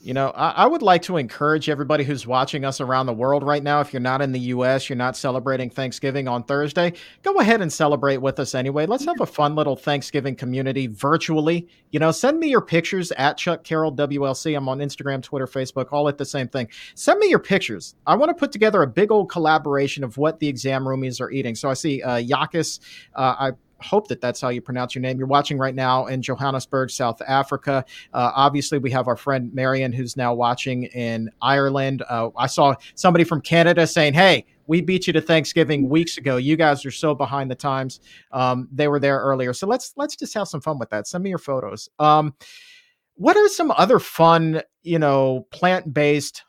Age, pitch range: 40-59, 130-165 Hz